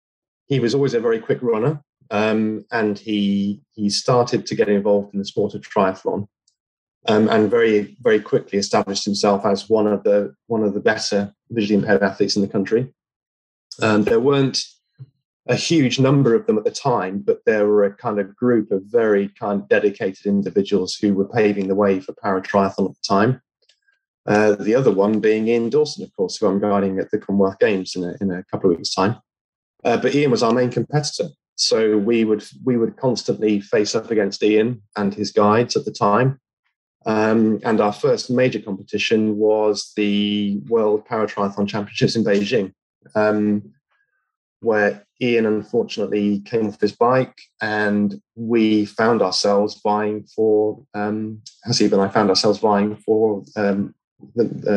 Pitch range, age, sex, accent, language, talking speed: 100-120 Hz, 20-39, male, British, English, 175 wpm